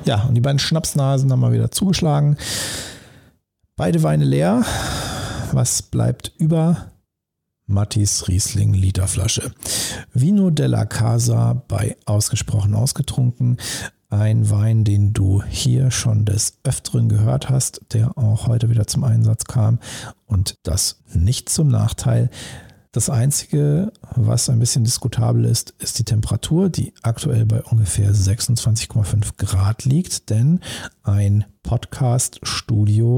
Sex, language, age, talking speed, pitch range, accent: male, German, 50-69, 120 wpm, 105-125 Hz, German